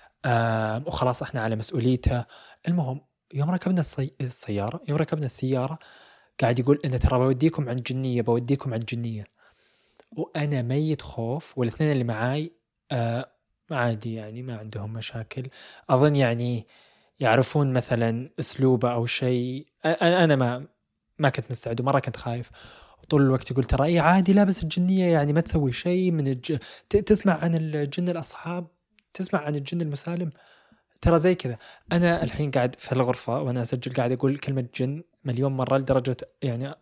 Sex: male